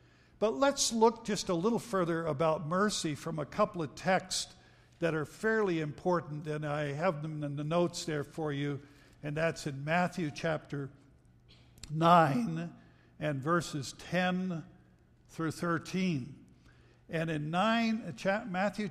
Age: 60-79